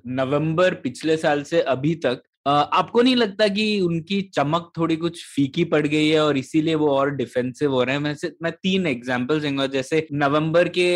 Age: 20-39